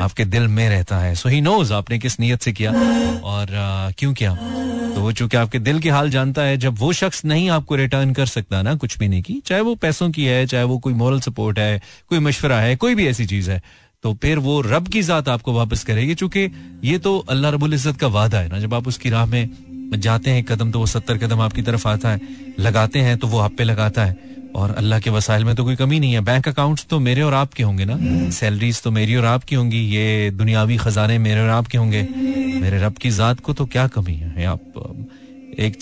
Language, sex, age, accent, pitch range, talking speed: Hindi, male, 30-49, native, 110-145 Hz, 235 wpm